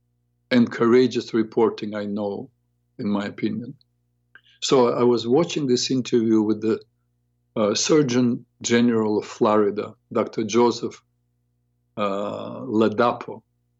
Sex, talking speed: male, 110 wpm